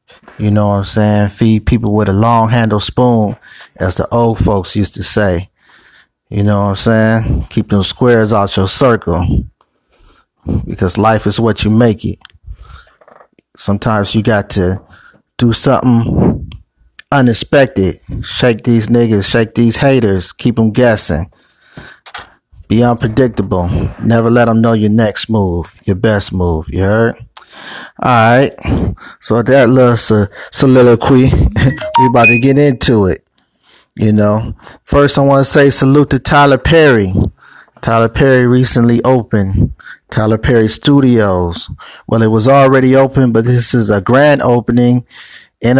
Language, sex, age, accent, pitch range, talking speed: English, male, 30-49, American, 105-125 Hz, 145 wpm